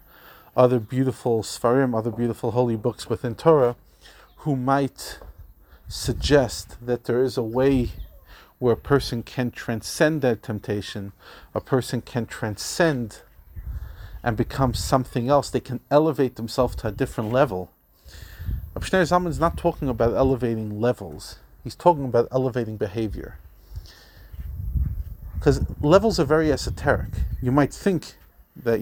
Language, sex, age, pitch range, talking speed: English, male, 40-59, 105-135 Hz, 130 wpm